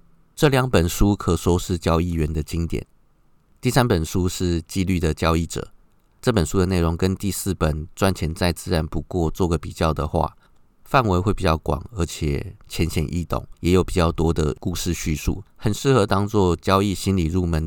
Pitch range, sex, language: 80-95 Hz, male, Chinese